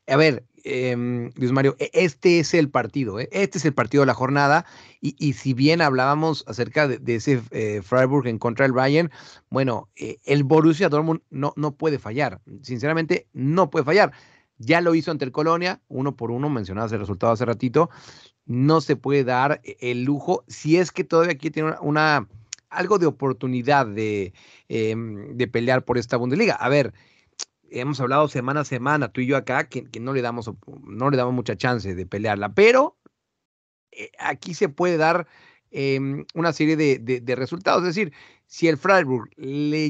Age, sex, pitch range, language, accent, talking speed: 30-49, male, 125-155 Hz, Spanish, Mexican, 190 wpm